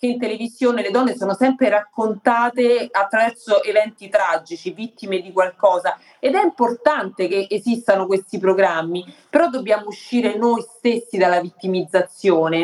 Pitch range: 190-245 Hz